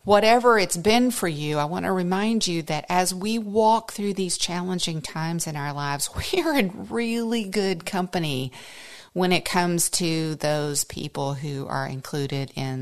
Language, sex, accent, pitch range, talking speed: English, female, American, 145-190 Hz, 170 wpm